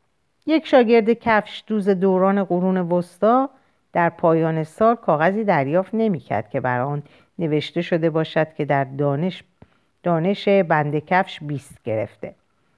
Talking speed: 130 wpm